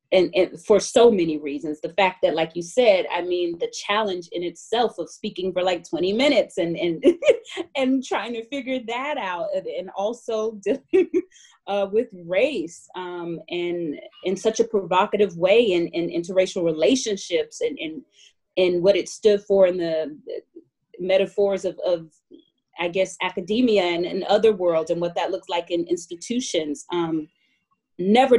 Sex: female